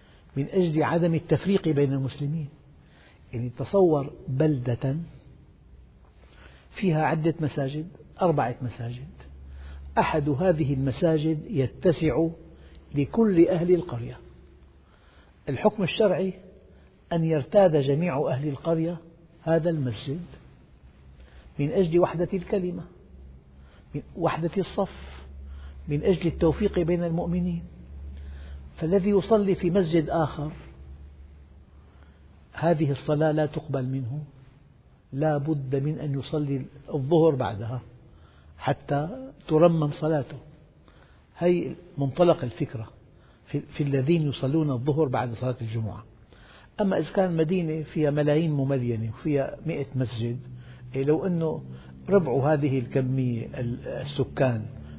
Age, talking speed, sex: 60-79, 95 wpm, male